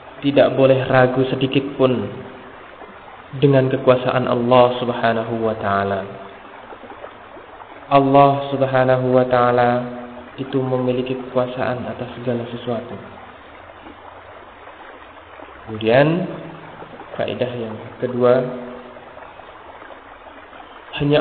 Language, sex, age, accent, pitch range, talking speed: Indonesian, male, 20-39, native, 120-135 Hz, 75 wpm